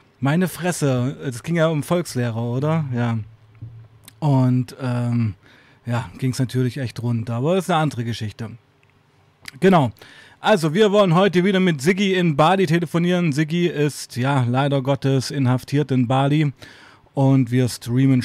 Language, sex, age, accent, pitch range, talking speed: German, male, 30-49, German, 125-155 Hz, 150 wpm